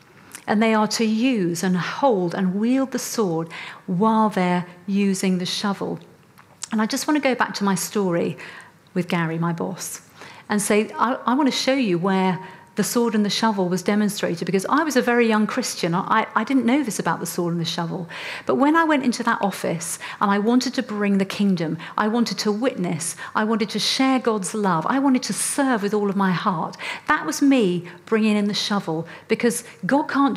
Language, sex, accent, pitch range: English, female, British, 190-245 Hz